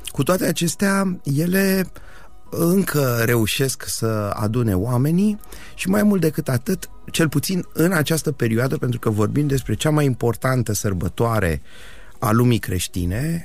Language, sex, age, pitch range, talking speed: Romanian, male, 30-49, 105-145 Hz, 135 wpm